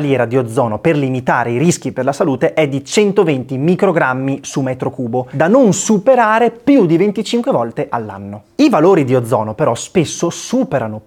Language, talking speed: Italian, 170 wpm